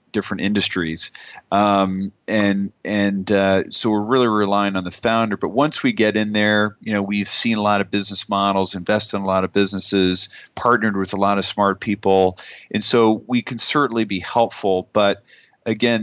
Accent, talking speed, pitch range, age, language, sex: American, 185 wpm, 95-115 Hz, 40-59, English, male